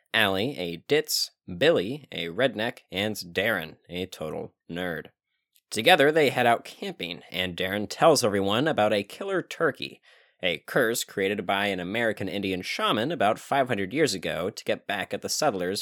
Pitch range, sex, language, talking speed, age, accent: 90-115 Hz, male, English, 160 wpm, 30-49, American